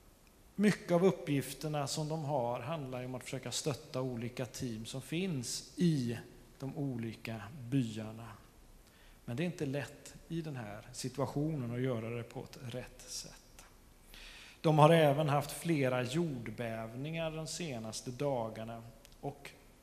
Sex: male